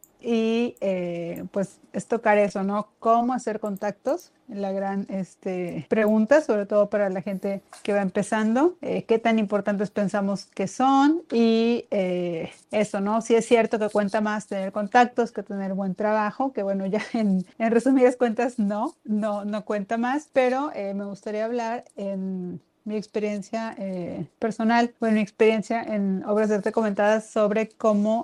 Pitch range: 205-235 Hz